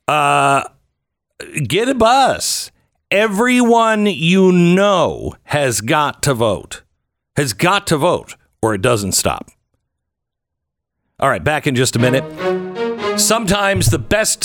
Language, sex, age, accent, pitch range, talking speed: English, male, 60-79, American, 95-150 Hz, 120 wpm